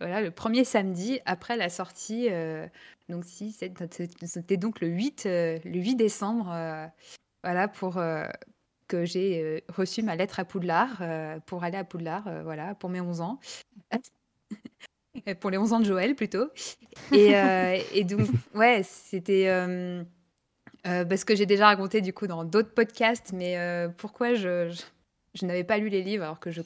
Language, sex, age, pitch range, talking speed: French, female, 20-39, 175-215 Hz, 185 wpm